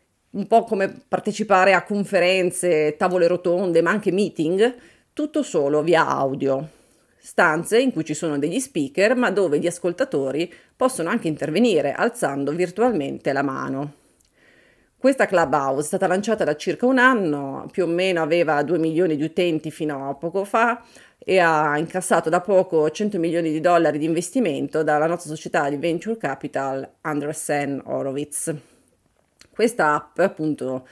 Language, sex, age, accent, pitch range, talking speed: Italian, female, 30-49, native, 150-210 Hz, 150 wpm